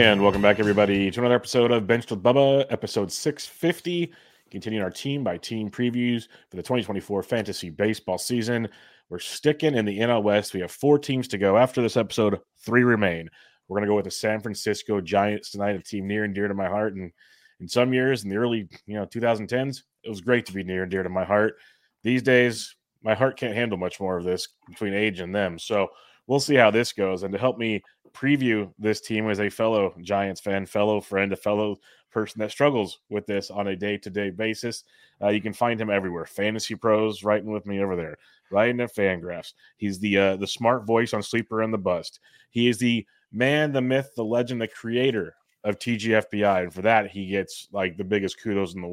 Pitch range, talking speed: 100-120 Hz, 215 wpm